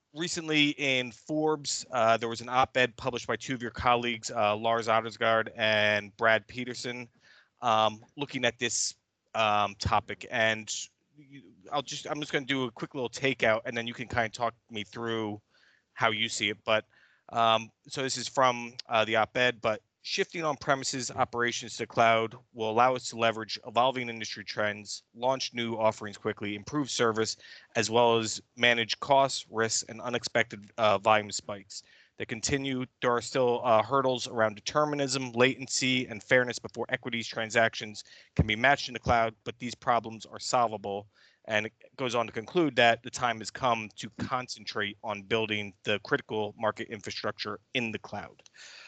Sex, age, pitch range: male, 30-49, 110-130 Hz